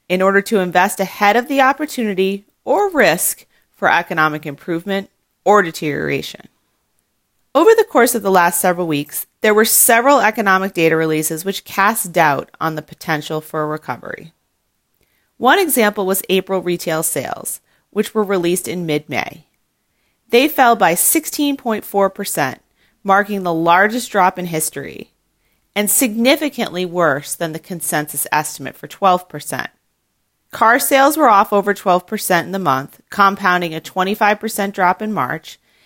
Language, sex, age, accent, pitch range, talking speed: English, female, 30-49, American, 170-220 Hz, 140 wpm